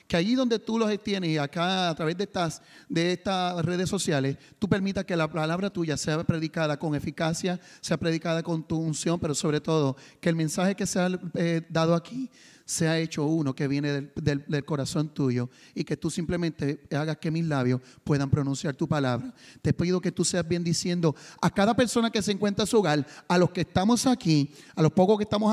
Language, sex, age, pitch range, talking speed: English, male, 30-49, 160-225 Hz, 210 wpm